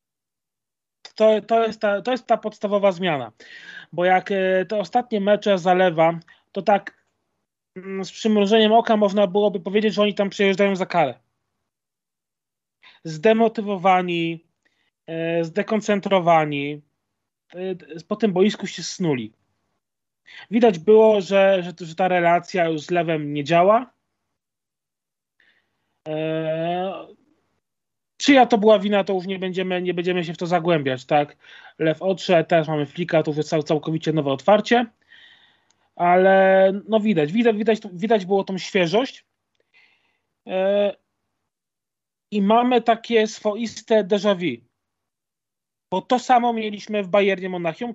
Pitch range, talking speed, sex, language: 165-215 Hz, 120 wpm, male, Polish